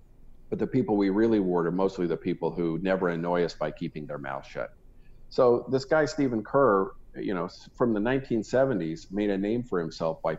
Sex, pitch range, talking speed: male, 85-100 Hz, 200 wpm